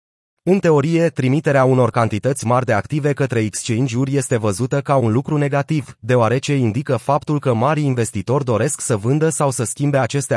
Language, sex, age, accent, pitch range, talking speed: Romanian, male, 30-49, native, 115-145 Hz, 170 wpm